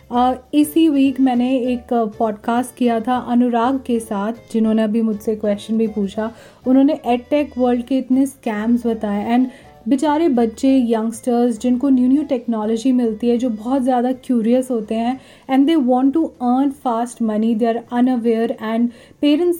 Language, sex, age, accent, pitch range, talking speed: Hindi, female, 10-29, native, 230-265 Hz, 160 wpm